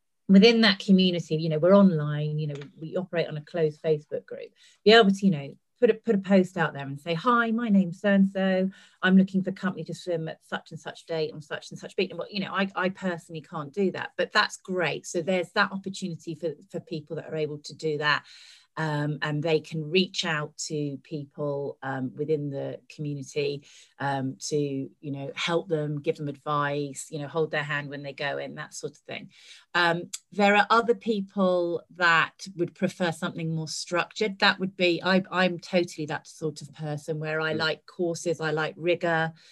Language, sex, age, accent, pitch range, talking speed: English, female, 30-49, British, 150-190 Hz, 210 wpm